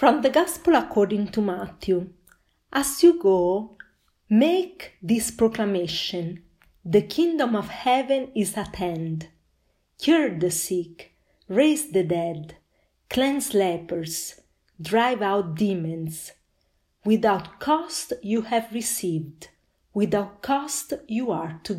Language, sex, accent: English, female, Italian